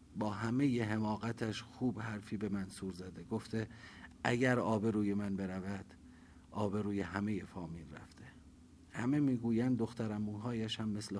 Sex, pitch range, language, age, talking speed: male, 95-130 Hz, Persian, 50-69, 125 wpm